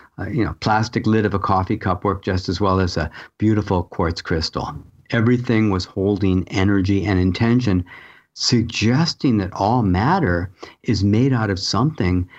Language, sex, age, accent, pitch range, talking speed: English, male, 50-69, American, 95-125 Hz, 155 wpm